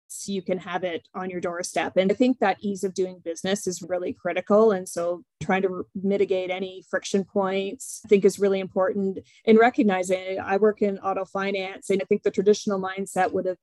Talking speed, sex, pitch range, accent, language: 205 wpm, female, 180-200 Hz, American, English